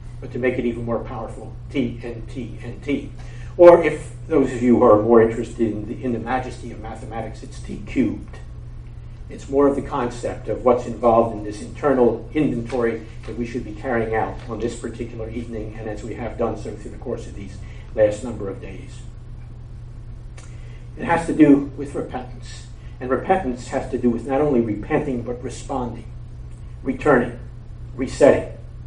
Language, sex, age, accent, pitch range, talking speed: English, male, 60-79, American, 115-125 Hz, 180 wpm